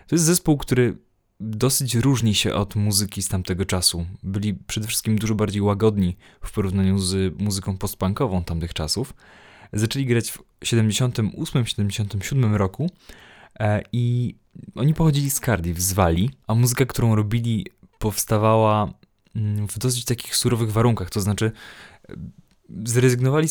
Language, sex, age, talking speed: Polish, male, 20-39, 125 wpm